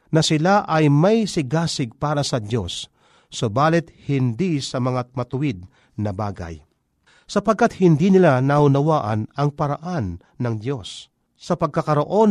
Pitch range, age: 125-170 Hz, 50-69